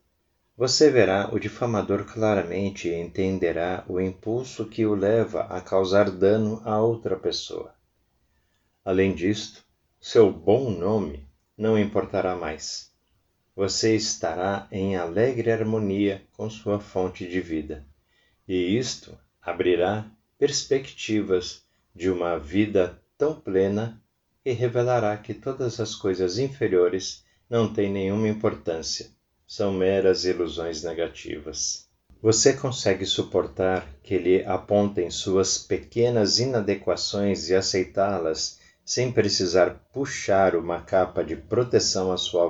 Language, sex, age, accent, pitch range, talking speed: Portuguese, male, 50-69, Brazilian, 95-110 Hz, 115 wpm